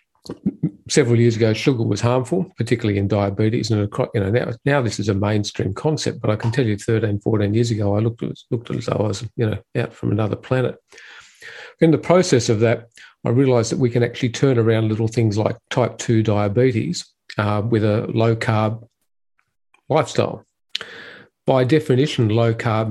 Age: 50-69